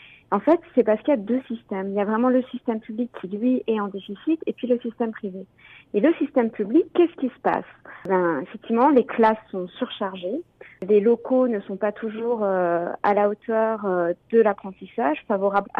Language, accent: French, French